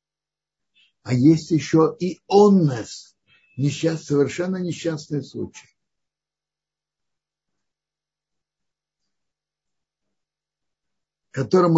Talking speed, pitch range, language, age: 55 wpm, 140-185 Hz, Russian, 60-79